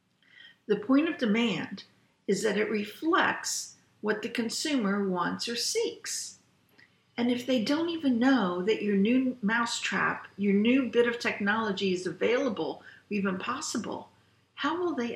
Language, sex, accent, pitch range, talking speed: English, female, American, 195-270 Hz, 145 wpm